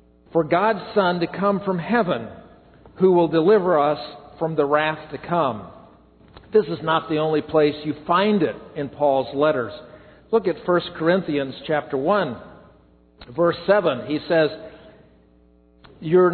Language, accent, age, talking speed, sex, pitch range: English, American, 50-69, 145 wpm, male, 150-185 Hz